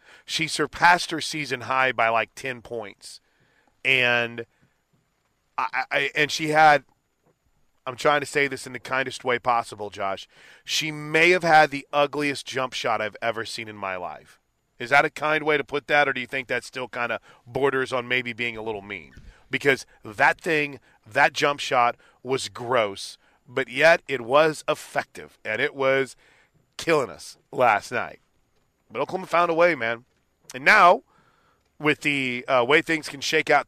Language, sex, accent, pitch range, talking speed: English, male, American, 125-155 Hz, 175 wpm